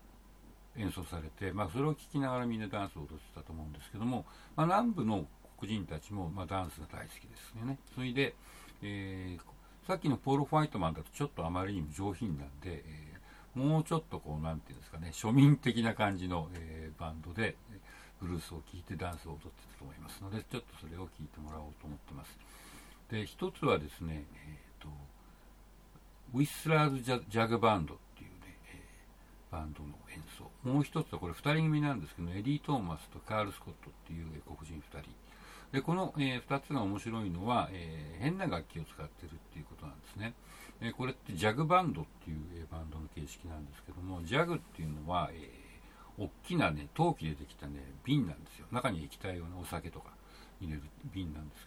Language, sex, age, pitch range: Japanese, male, 60-79, 80-130 Hz